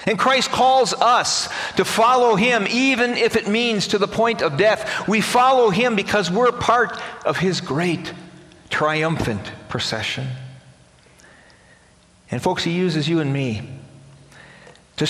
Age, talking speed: 50-69, 140 wpm